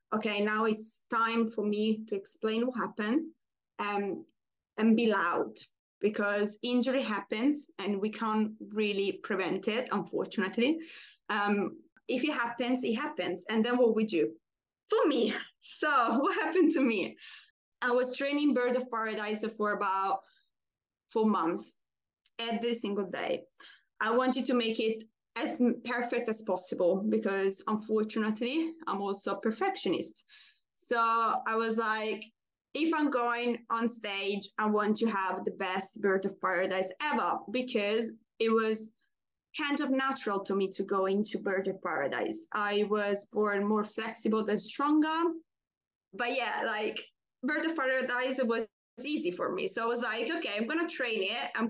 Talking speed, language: 150 wpm, English